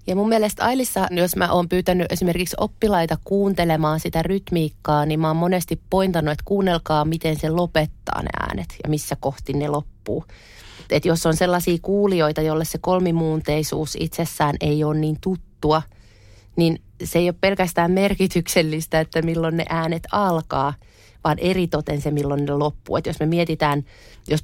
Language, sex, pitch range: Finnish, female, 150-175 Hz